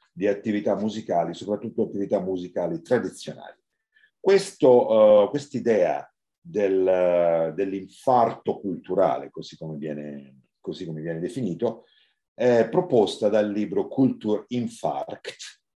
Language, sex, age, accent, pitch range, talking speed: Italian, male, 50-69, native, 85-115 Hz, 75 wpm